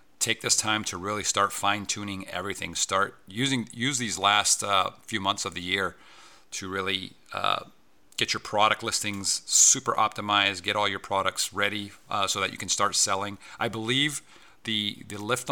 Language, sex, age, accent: English, male, 40-59, American